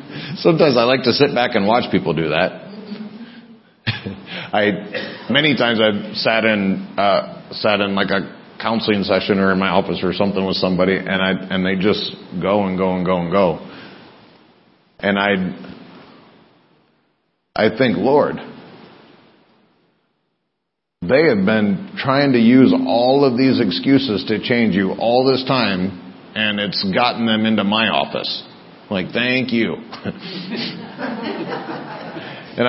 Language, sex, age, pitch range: English, male, 40-59, 105-140 Hz